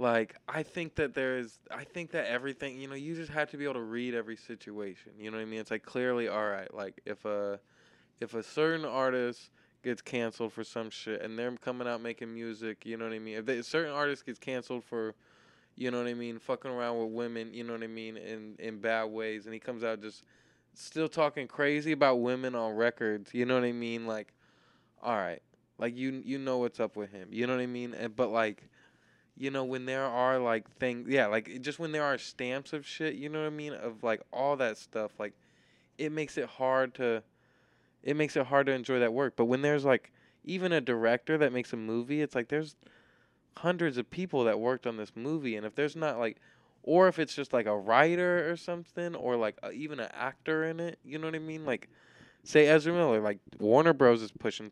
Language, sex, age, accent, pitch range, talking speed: English, male, 20-39, American, 115-145 Hz, 235 wpm